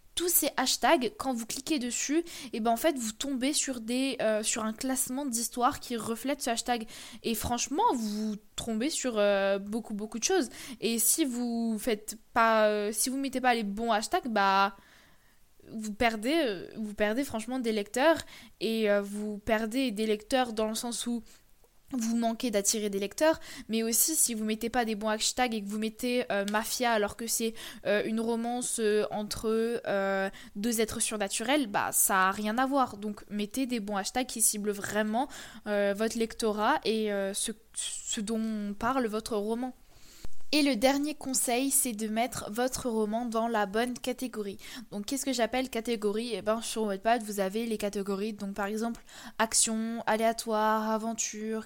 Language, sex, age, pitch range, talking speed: French, female, 20-39, 215-255 Hz, 180 wpm